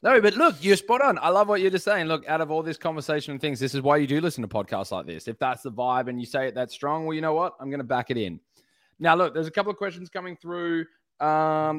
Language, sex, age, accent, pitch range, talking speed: English, male, 20-39, Australian, 125-155 Hz, 305 wpm